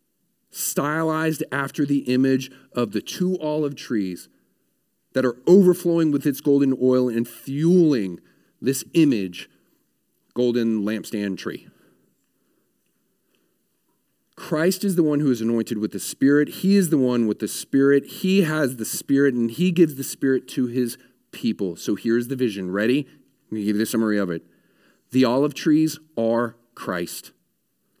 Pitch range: 115-140 Hz